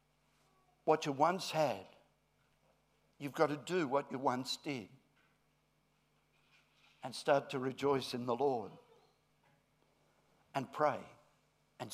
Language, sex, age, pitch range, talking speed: English, male, 60-79, 135-170 Hz, 110 wpm